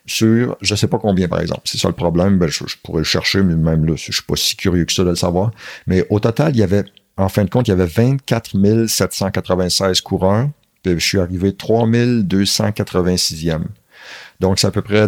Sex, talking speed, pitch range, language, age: male, 235 wpm, 90-110 Hz, English, 60-79